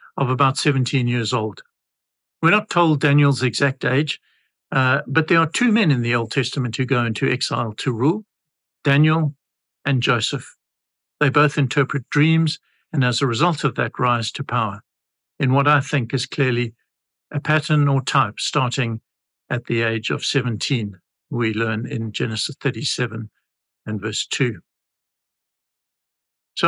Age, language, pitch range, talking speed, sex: 60-79, English, 120-150 Hz, 155 wpm, male